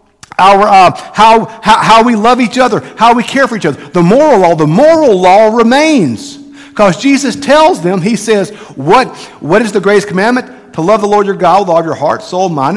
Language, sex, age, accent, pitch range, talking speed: English, male, 50-69, American, 140-215 Hz, 215 wpm